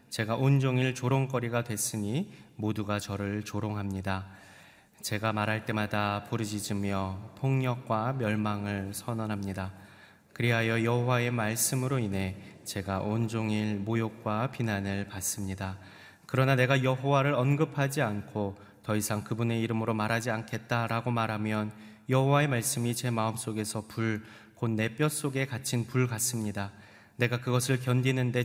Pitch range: 105-125 Hz